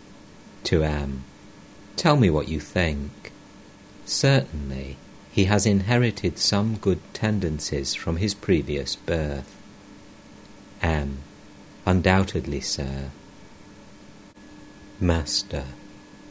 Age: 50-69